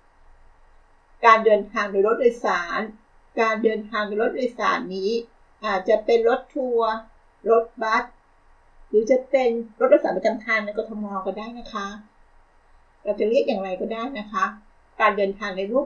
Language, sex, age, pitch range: Thai, female, 60-79, 195-240 Hz